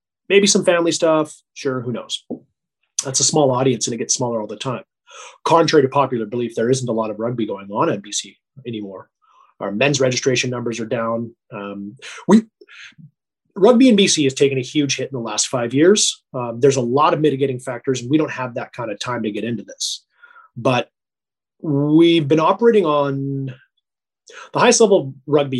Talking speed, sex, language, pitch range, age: 195 wpm, male, English, 125-180 Hz, 30-49